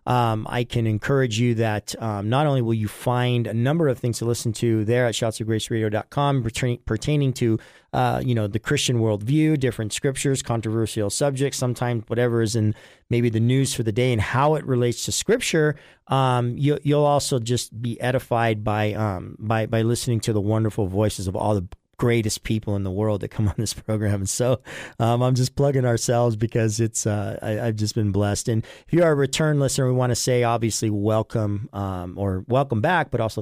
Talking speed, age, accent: 210 wpm, 40-59, American